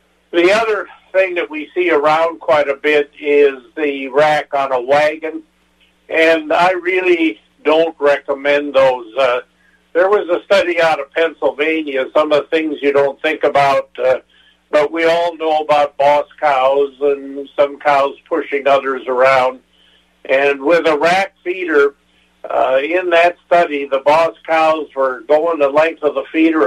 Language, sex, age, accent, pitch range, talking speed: English, male, 50-69, American, 135-160 Hz, 160 wpm